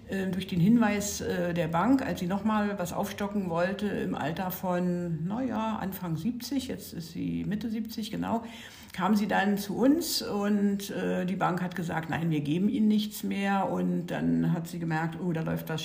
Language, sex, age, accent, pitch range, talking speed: German, female, 60-79, German, 175-225 Hz, 185 wpm